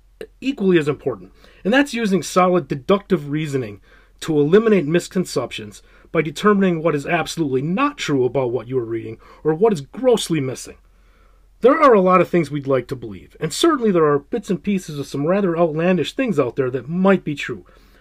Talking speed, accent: 190 wpm, American